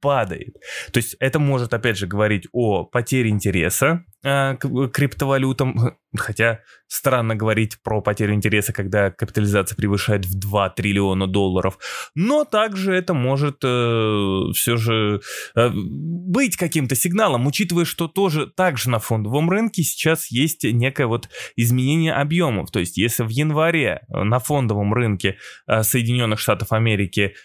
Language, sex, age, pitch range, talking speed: Russian, male, 20-39, 105-140 Hz, 135 wpm